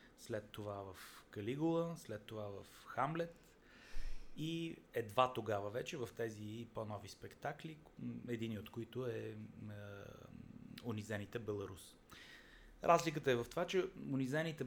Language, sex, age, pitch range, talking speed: Bulgarian, male, 30-49, 105-140 Hz, 120 wpm